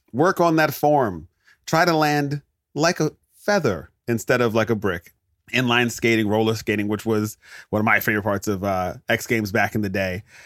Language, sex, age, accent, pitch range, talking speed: English, male, 30-49, American, 105-135 Hz, 195 wpm